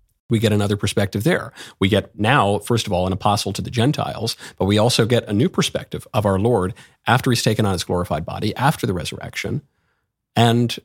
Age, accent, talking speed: 40-59, American, 205 wpm